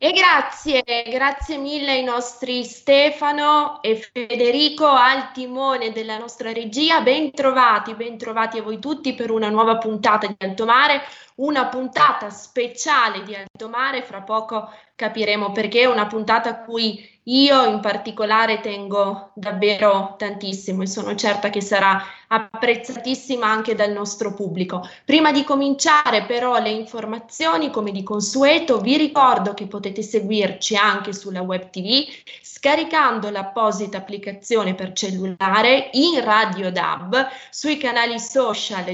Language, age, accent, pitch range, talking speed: Italian, 20-39, native, 200-255 Hz, 130 wpm